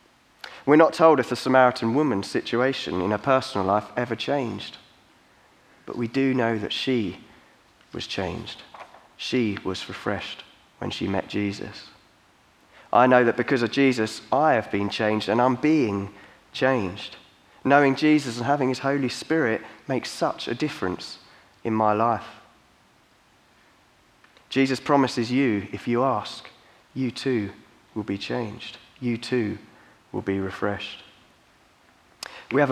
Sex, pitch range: male, 105-130 Hz